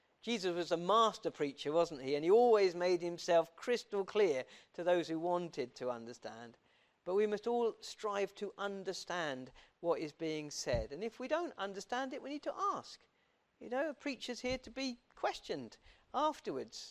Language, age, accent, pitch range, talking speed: English, 40-59, British, 170-245 Hz, 180 wpm